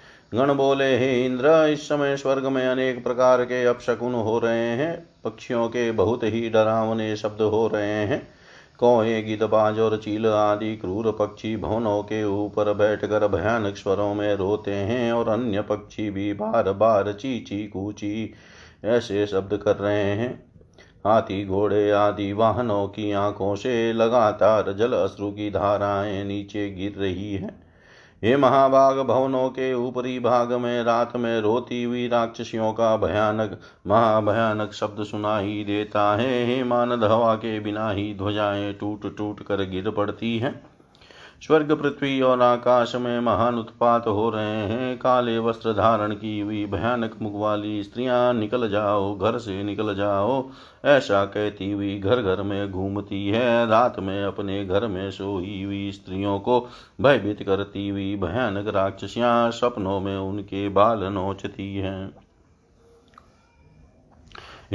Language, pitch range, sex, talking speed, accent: Hindi, 100-120 Hz, male, 140 wpm, native